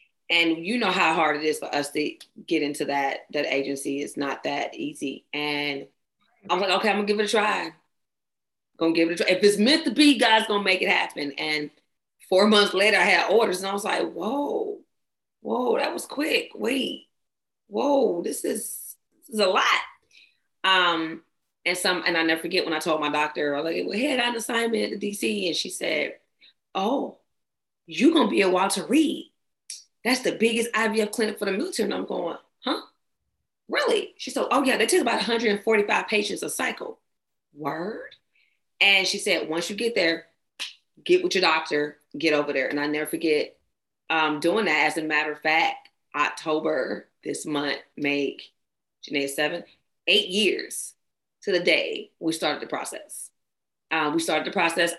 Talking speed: 195 wpm